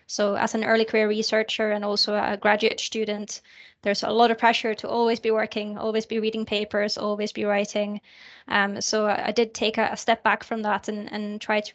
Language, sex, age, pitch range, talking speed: English, female, 20-39, 205-225 Hz, 210 wpm